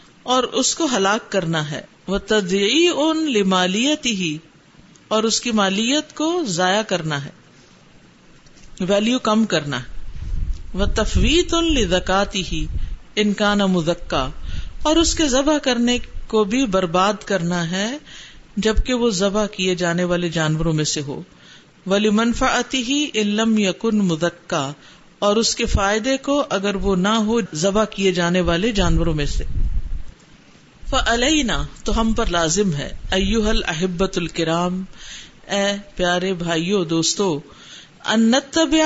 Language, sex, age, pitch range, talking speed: Urdu, female, 50-69, 175-235 Hz, 115 wpm